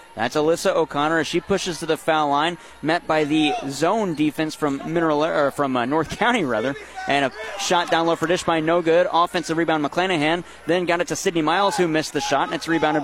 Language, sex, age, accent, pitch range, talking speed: English, male, 30-49, American, 150-180 Hz, 215 wpm